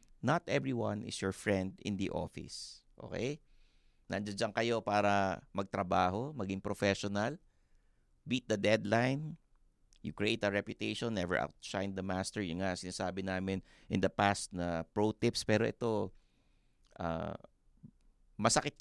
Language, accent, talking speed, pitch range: English, Filipino, 130 wpm, 95-125 Hz